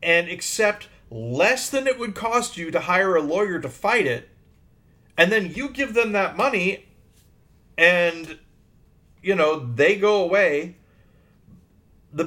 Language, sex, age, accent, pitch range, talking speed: English, male, 40-59, American, 145-205 Hz, 140 wpm